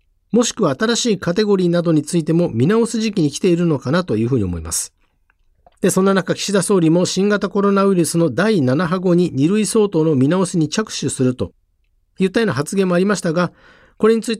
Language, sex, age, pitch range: Japanese, male, 50-69, 135-210 Hz